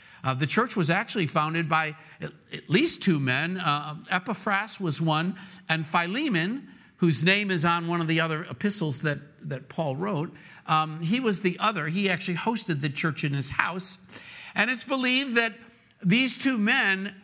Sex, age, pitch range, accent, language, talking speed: male, 50-69, 150-205 Hz, American, English, 175 wpm